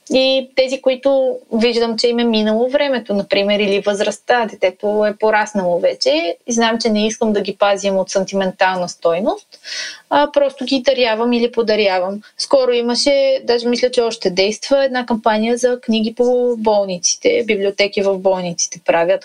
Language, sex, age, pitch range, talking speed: Bulgarian, female, 20-39, 205-255 Hz, 155 wpm